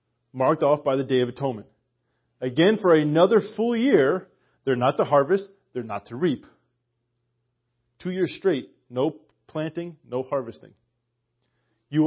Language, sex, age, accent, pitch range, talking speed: English, male, 30-49, American, 125-175 Hz, 140 wpm